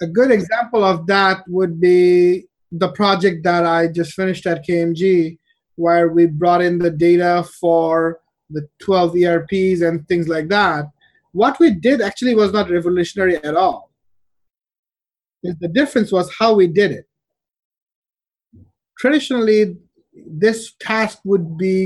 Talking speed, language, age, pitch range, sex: 135 wpm, English, 30-49, 175-215 Hz, male